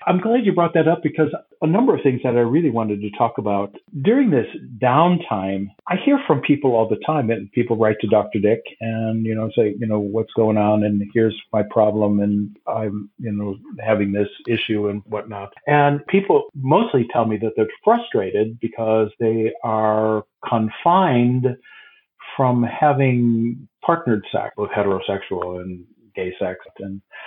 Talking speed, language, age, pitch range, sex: 170 wpm, English, 50-69, 110-155 Hz, male